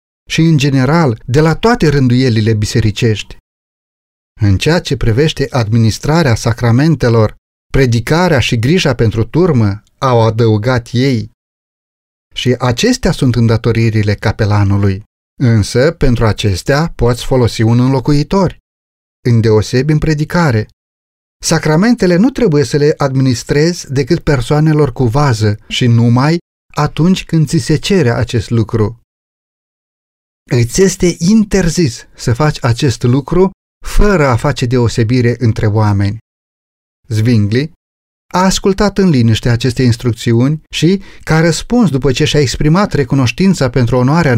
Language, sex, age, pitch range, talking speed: Romanian, male, 30-49, 115-155 Hz, 115 wpm